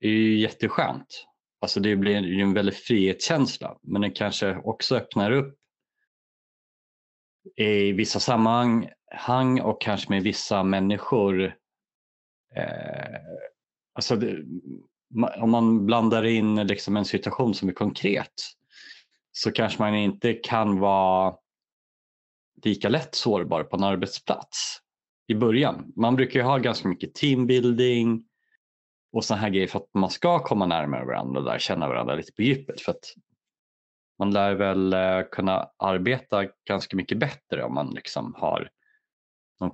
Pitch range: 95-115 Hz